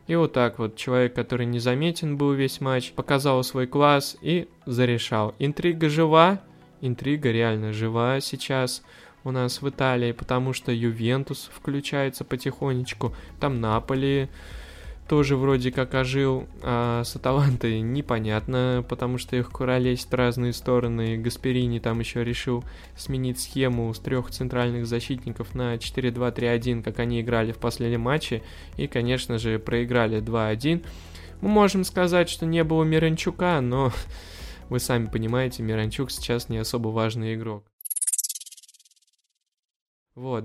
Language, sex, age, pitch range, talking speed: Russian, male, 20-39, 115-135 Hz, 130 wpm